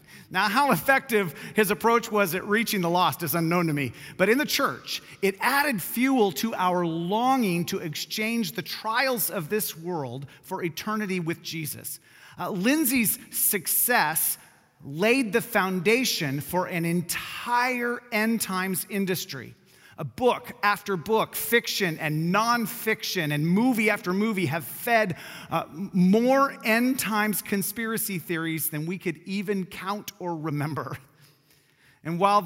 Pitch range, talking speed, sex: 165-220 Hz, 140 wpm, male